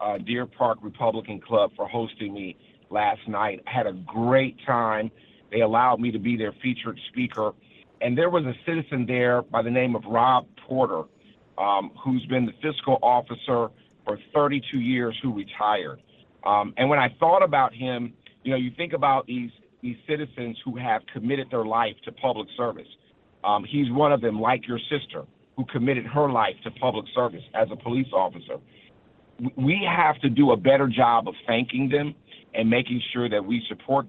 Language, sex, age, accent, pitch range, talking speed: English, male, 50-69, American, 115-135 Hz, 185 wpm